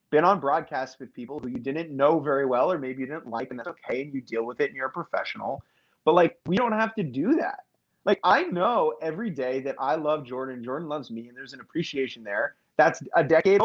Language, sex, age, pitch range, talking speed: English, male, 30-49, 125-180 Hz, 245 wpm